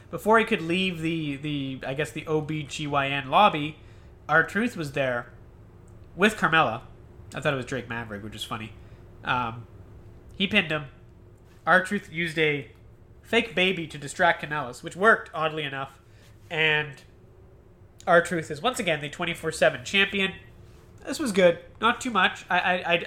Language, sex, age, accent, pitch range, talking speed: English, male, 30-49, American, 120-175 Hz, 150 wpm